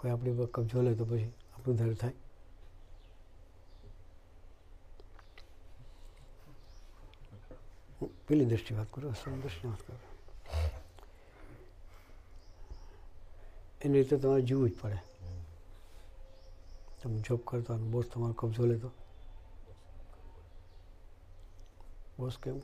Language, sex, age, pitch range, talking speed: Gujarati, male, 60-79, 90-120 Hz, 75 wpm